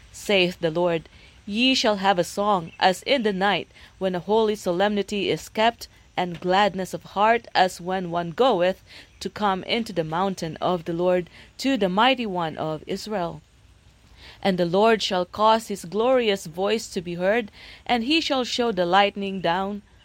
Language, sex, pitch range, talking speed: English, female, 175-215 Hz, 175 wpm